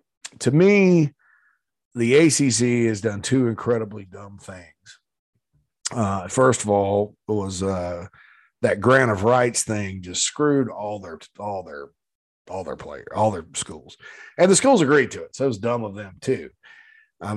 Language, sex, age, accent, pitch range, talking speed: English, male, 40-59, American, 105-135 Hz, 165 wpm